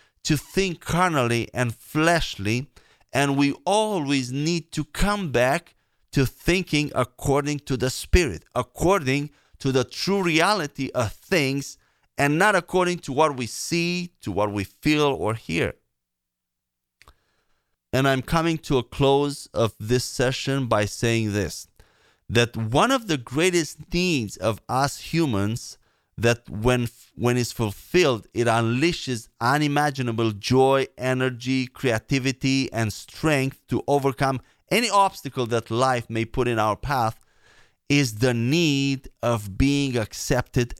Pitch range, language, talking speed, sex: 115-150 Hz, English, 130 wpm, male